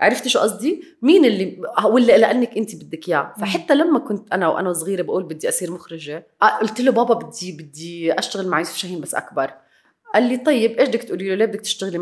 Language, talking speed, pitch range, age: Arabic, 205 wpm, 180-235 Hz, 30-49